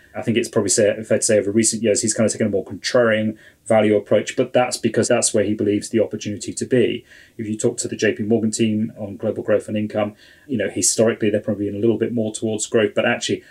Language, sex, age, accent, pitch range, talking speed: English, male, 30-49, British, 105-120 Hz, 255 wpm